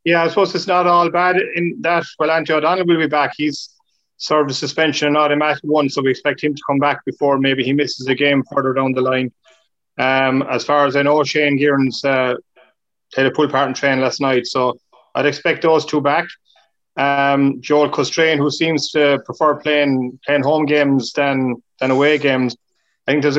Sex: male